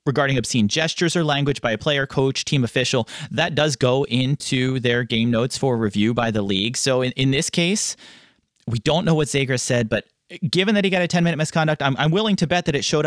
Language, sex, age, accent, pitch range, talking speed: English, male, 30-49, American, 125-155 Hz, 235 wpm